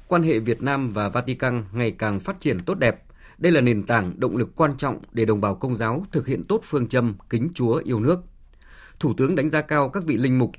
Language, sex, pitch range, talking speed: Vietnamese, male, 110-155 Hz, 245 wpm